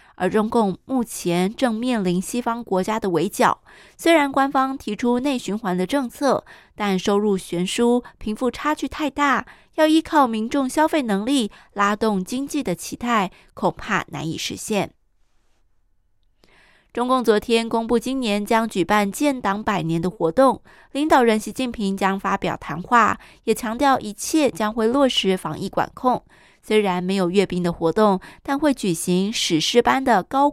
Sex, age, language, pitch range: female, 20-39, Chinese, 190-265 Hz